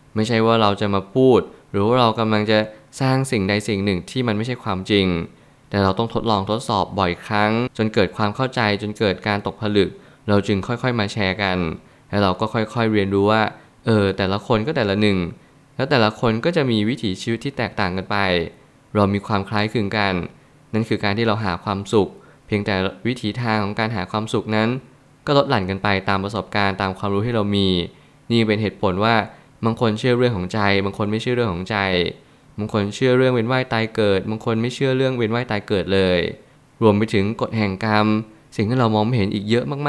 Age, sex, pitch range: 20-39, male, 100-125 Hz